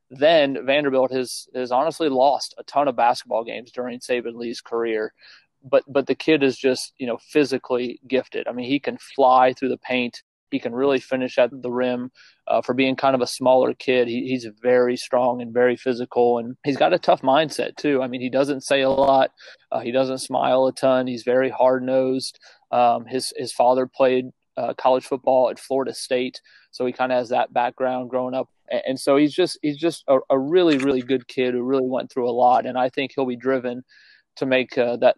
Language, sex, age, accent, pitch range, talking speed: English, male, 30-49, American, 125-135 Hz, 220 wpm